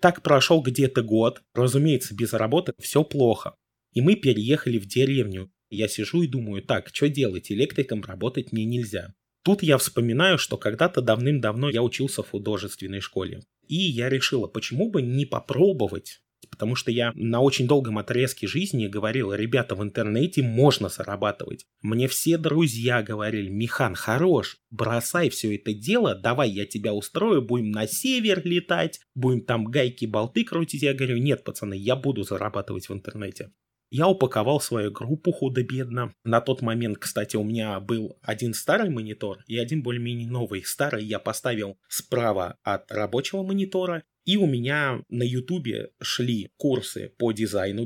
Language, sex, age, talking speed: Russian, male, 20-39, 155 wpm